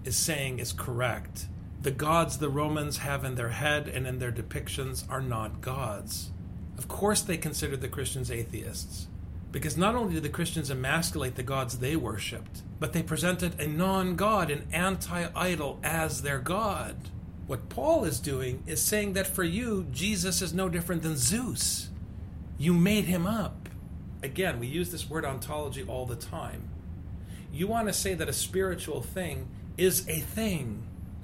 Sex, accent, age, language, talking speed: male, American, 40-59, English, 165 wpm